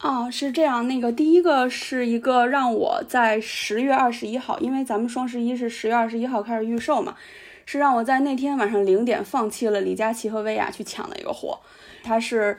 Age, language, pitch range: 20-39, Chinese, 210-275 Hz